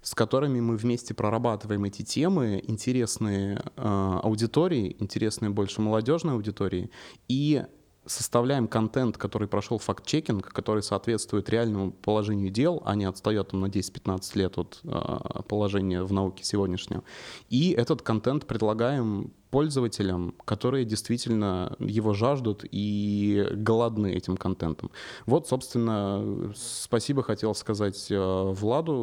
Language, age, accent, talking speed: Russian, 20-39, native, 115 wpm